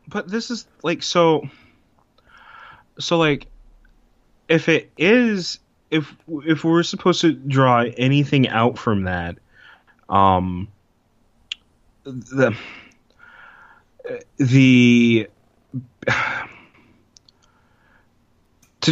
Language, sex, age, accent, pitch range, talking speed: English, male, 30-49, American, 105-145 Hz, 75 wpm